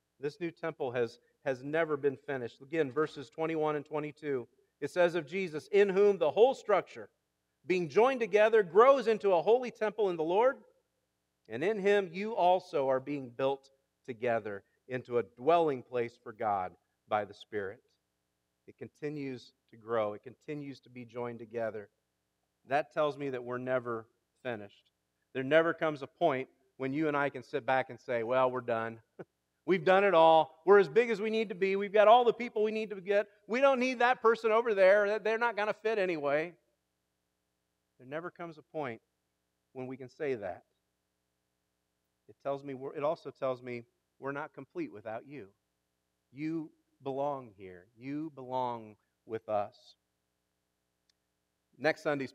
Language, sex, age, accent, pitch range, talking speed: English, male, 40-59, American, 110-170 Hz, 175 wpm